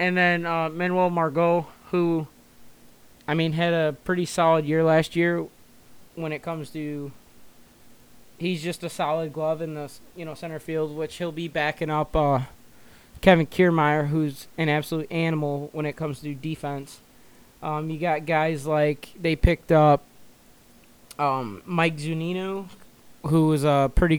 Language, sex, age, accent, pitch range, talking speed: English, male, 20-39, American, 145-170 Hz, 160 wpm